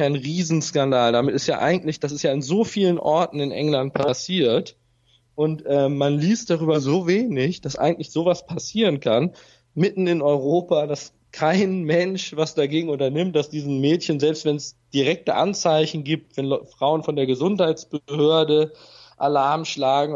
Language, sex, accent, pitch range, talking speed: German, male, German, 135-160 Hz, 160 wpm